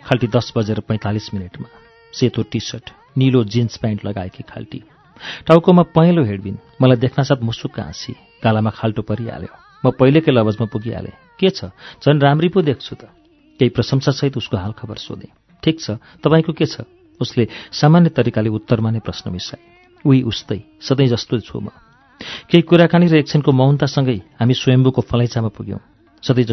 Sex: male